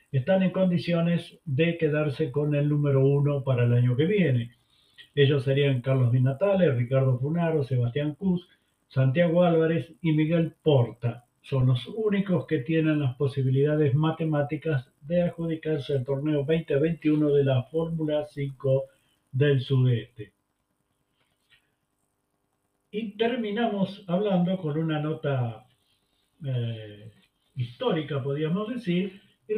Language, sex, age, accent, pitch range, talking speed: Spanish, male, 50-69, Argentinian, 135-170 Hz, 115 wpm